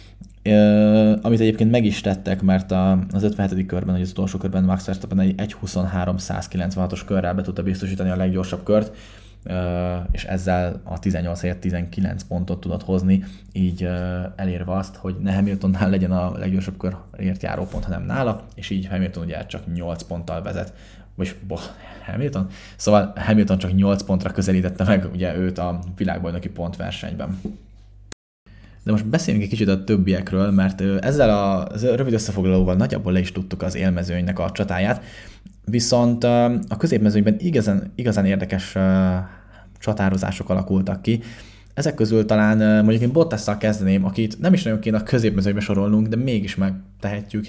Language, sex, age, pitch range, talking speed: Hungarian, male, 20-39, 95-105 Hz, 145 wpm